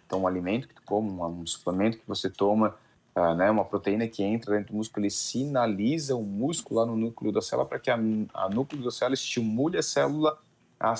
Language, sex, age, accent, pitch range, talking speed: Portuguese, male, 30-49, Brazilian, 95-115 Hz, 220 wpm